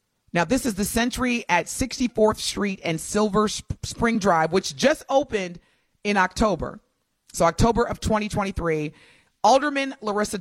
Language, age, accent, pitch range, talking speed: English, 30-49, American, 165-230 Hz, 135 wpm